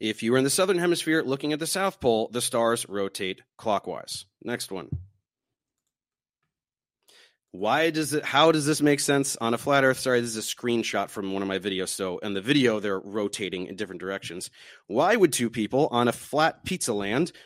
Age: 30-49